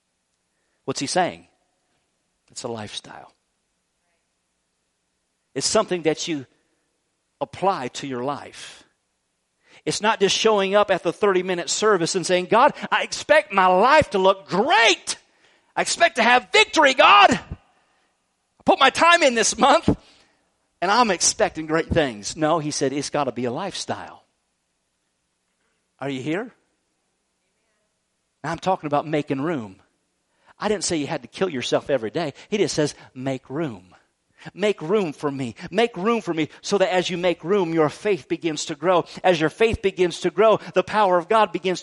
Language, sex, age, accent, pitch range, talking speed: English, male, 50-69, American, 145-205 Hz, 160 wpm